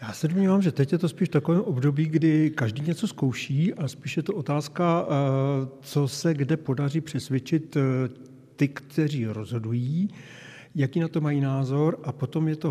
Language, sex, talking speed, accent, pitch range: Czech, male, 170 wpm, native, 120-150 Hz